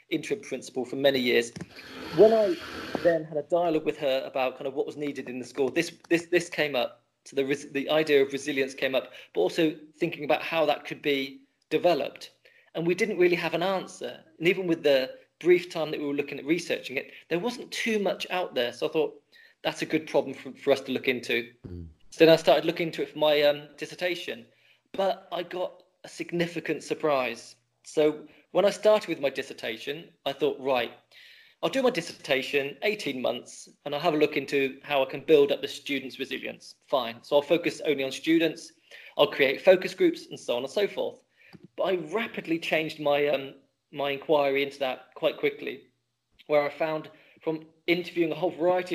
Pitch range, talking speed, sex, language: 140-180 Hz, 205 wpm, male, English